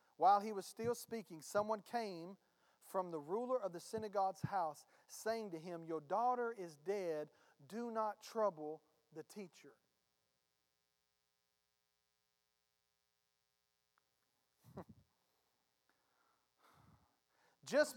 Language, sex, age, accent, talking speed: English, male, 40-59, American, 90 wpm